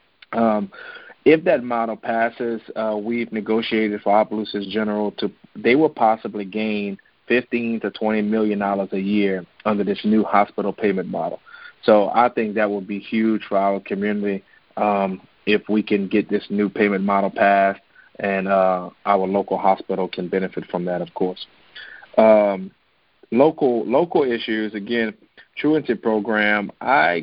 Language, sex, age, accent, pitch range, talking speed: English, male, 30-49, American, 100-110 Hz, 150 wpm